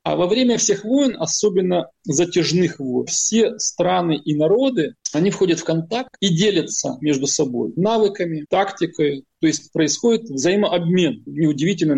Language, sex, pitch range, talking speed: Arabic, male, 150-200 Hz, 135 wpm